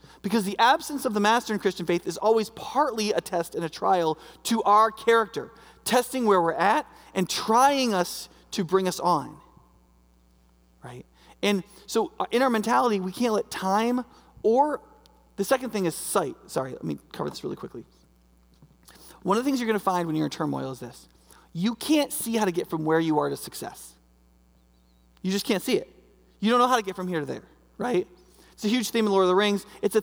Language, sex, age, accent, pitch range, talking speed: English, male, 30-49, American, 175-230 Hz, 210 wpm